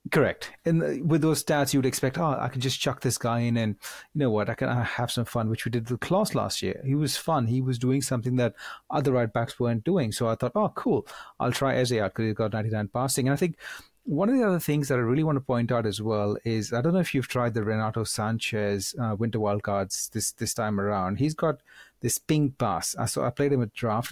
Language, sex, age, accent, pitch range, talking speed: English, male, 30-49, Indian, 115-140 Hz, 260 wpm